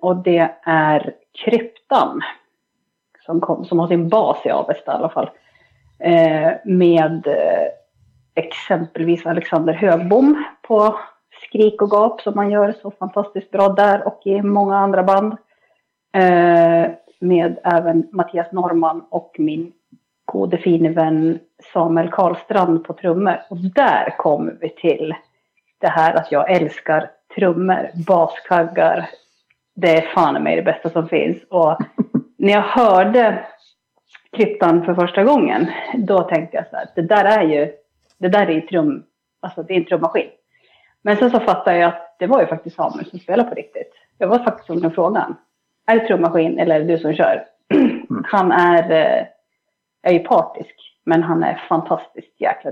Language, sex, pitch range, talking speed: Swedish, female, 165-210 Hz, 150 wpm